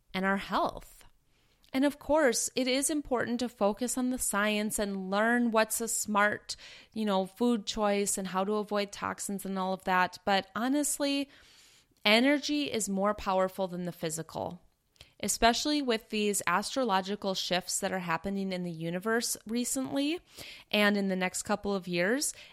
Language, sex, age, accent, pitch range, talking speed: English, female, 30-49, American, 185-230 Hz, 160 wpm